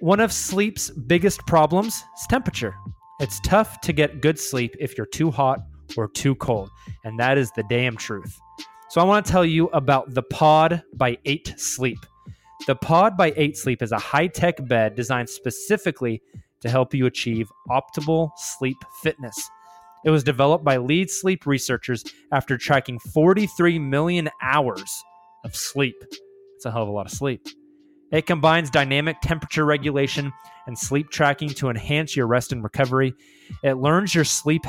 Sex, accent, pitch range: male, American, 125-175 Hz